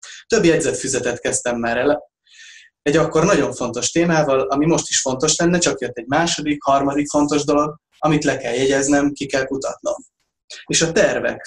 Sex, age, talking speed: male, 20-39, 165 wpm